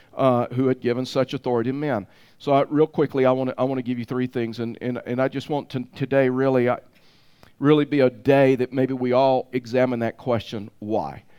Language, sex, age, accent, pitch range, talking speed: English, male, 50-69, American, 125-145 Hz, 225 wpm